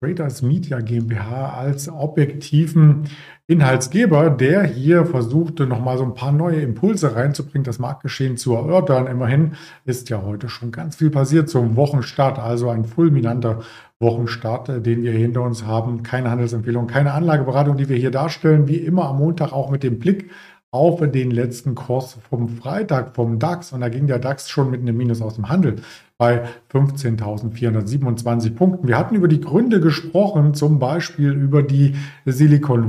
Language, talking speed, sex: German, 165 wpm, male